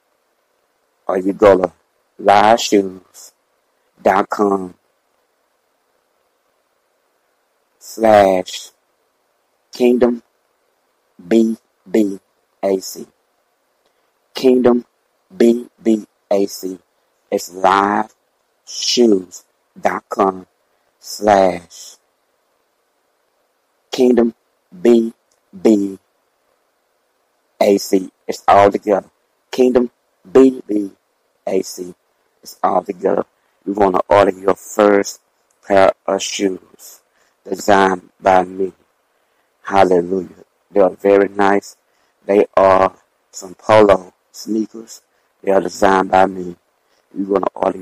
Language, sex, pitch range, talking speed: English, male, 95-105 Hz, 85 wpm